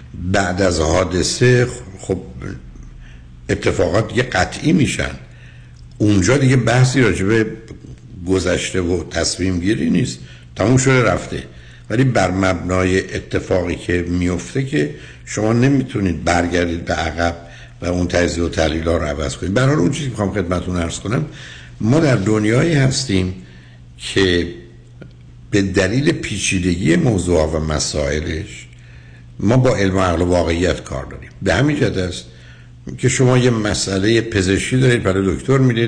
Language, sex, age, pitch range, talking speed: Persian, male, 60-79, 75-115 Hz, 135 wpm